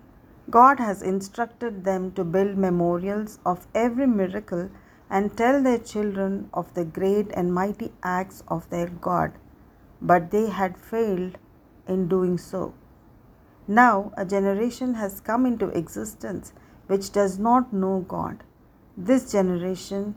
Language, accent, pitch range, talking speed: English, Indian, 185-220 Hz, 130 wpm